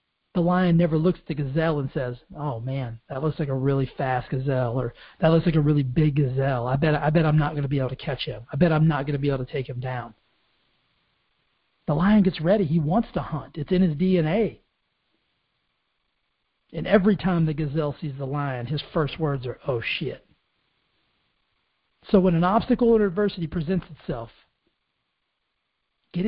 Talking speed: 195 wpm